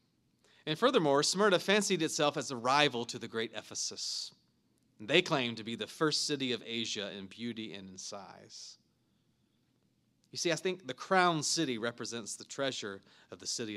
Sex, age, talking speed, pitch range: male, 30-49, 170 wpm, 115-165 Hz